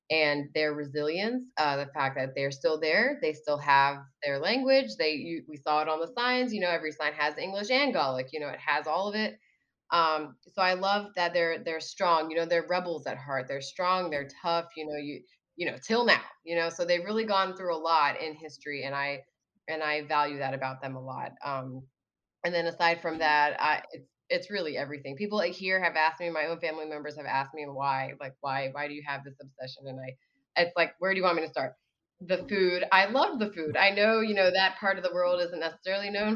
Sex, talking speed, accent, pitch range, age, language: female, 240 wpm, American, 150-195 Hz, 20-39, English